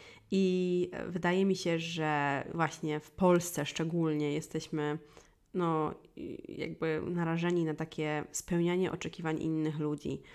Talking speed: 105 wpm